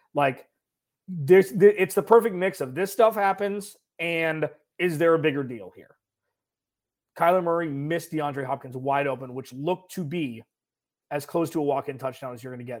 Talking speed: 190 wpm